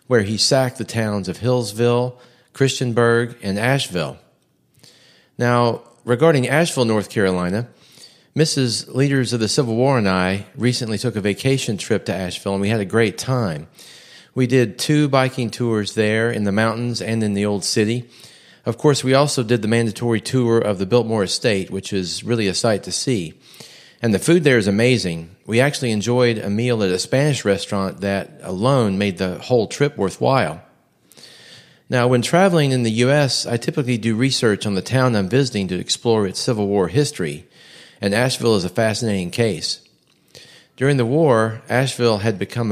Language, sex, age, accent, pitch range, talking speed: English, male, 40-59, American, 100-125 Hz, 175 wpm